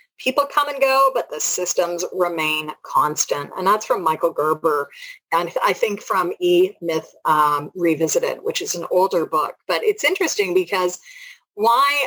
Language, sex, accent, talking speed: English, female, American, 160 wpm